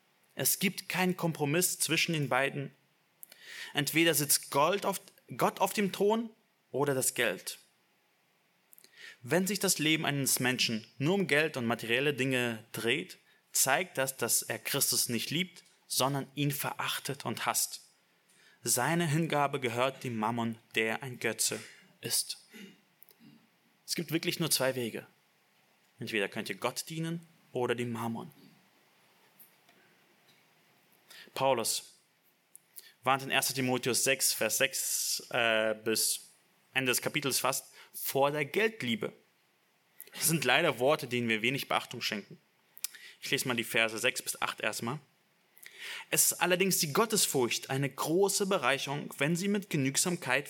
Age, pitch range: 30-49, 125-175 Hz